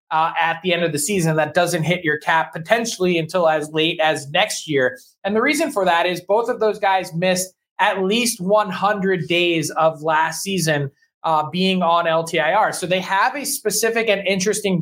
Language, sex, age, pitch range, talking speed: English, male, 20-39, 165-205 Hz, 195 wpm